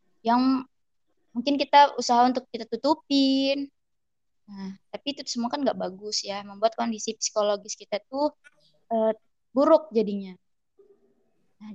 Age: 20-39